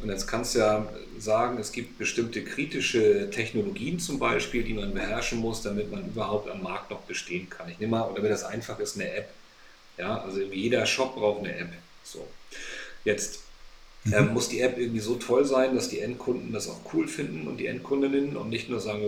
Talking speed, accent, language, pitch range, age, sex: 205 wpm, German, German, 105-125 Hz, 40-59, male